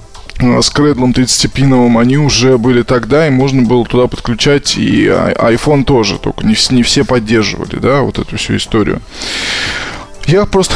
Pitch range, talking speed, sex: 120-140 Hz, 145 wpm, male